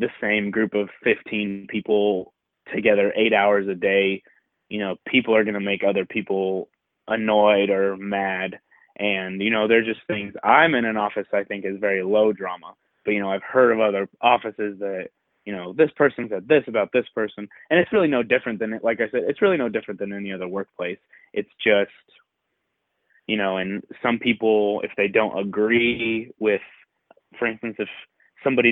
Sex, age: male, 20-39